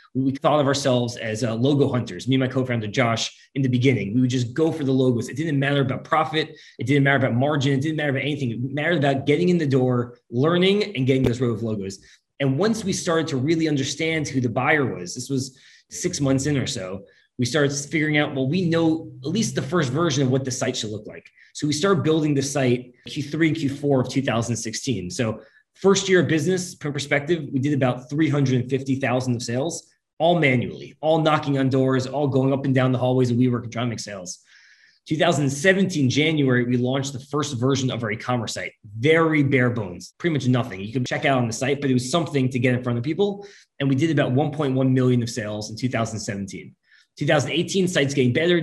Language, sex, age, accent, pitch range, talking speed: English, male, 20-39, American, 125-155 Hz, 220 wpm